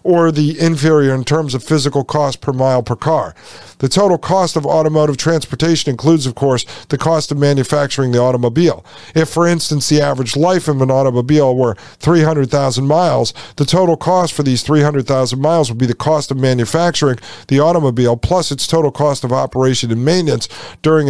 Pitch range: 130-165 Hz